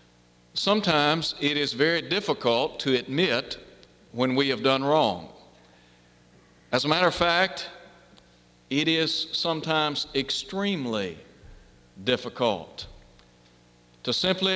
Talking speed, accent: 100 wpm, American